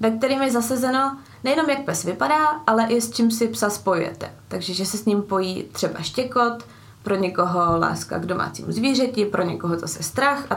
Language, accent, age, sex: Czech, native, 20-39, female